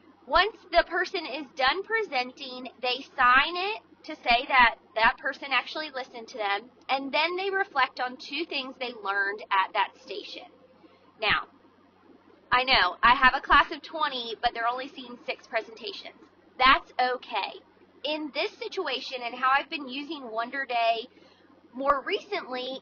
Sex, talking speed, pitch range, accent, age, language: female, 155 wpm, 245-330 Hz, American, 20-39, English